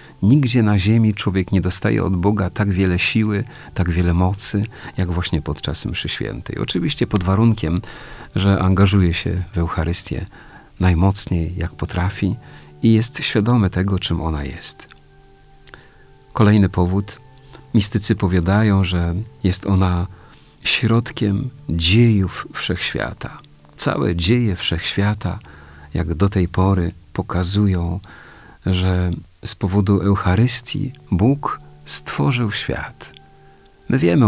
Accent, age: native, 40-59